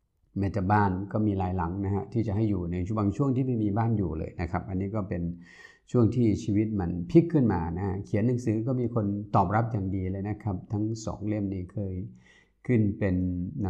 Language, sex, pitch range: Thai, male, 90-105 Hz